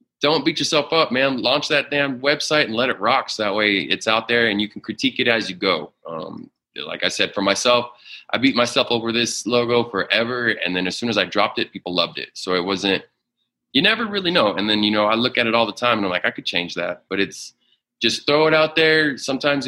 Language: English